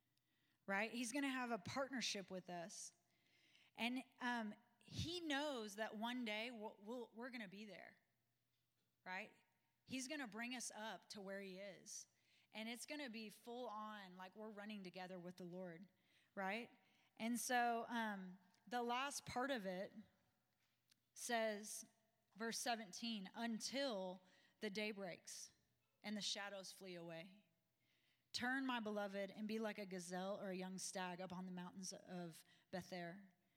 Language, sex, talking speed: English, female, 155 wpm